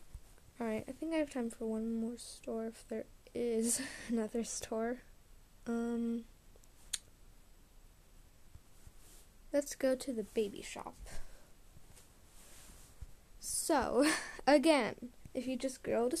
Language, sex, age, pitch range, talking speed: English, female, 10-29, 225-275 Hz, 105 wpm